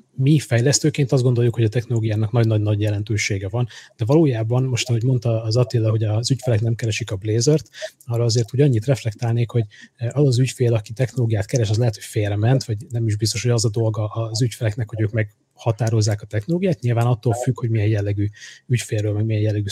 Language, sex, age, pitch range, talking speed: Hungarian, male, 30-49, 110-125 Hz, 205 wpm